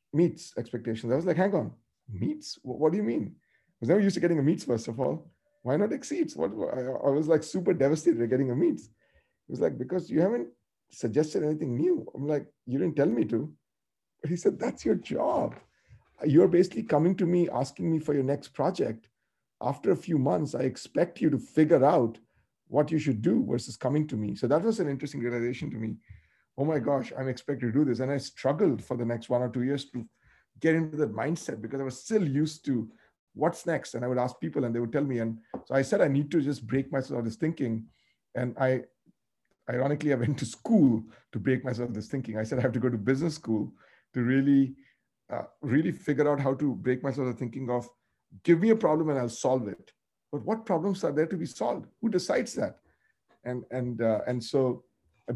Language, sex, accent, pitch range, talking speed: English, male, Indian, 120-155 Hz, 230 wpm